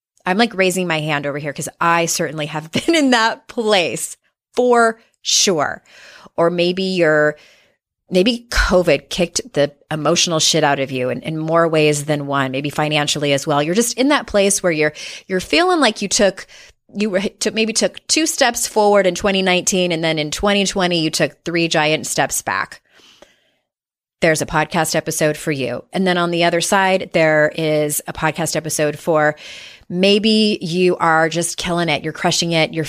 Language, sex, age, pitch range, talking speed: English, female, 30-49, 155-200 Hz, 180 wpm